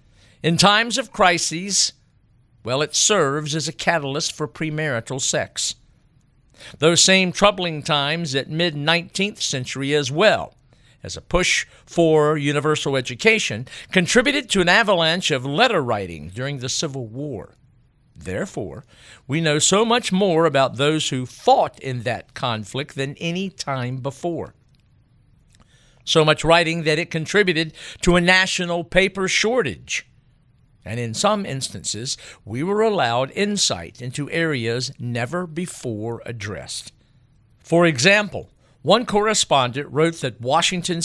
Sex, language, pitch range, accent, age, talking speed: male, English, 125-180 Hz, American, 50-69, 125 wpm